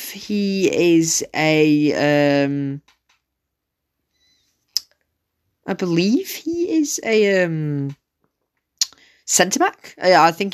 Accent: British